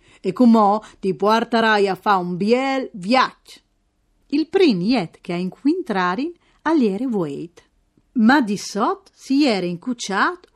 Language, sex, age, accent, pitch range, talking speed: Italian, female, 40-59, native, 200-310 Hz, 130 wpm